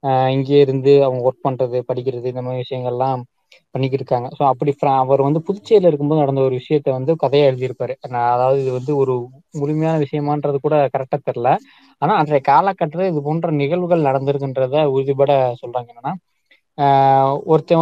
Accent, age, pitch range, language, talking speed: native, 20-39, 130-155 Hz, Tamil, 140 wpm